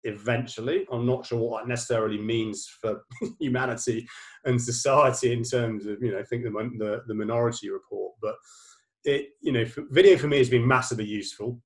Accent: British